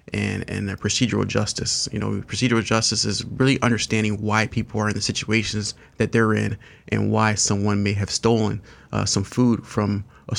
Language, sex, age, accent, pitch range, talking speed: English, male, 30-49, American, 105-120 Hz, 185 wpm